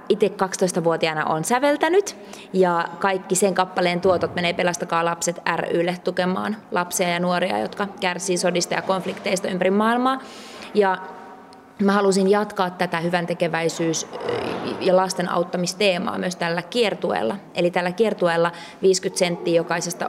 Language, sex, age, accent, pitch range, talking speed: Finnish, female, 20-39, native, 175-210 Hz, 125 wpm